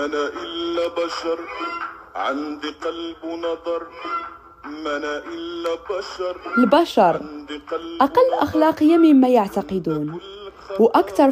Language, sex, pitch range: Arabic, female, 180-280 Hz